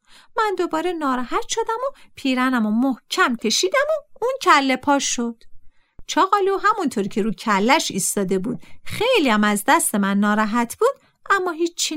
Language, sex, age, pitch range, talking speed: Persian, female, 50-69, 225-375 Hz, 145 wpm